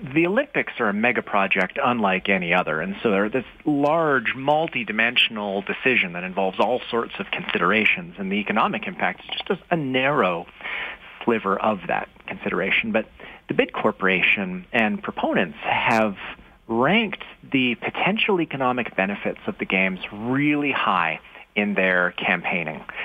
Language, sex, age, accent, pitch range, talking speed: English, male, 40-59, American, 100-155 Hz, 140 wpm